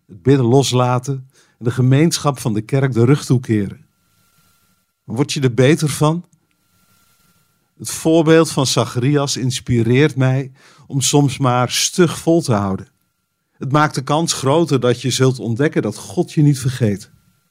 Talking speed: 150 wpm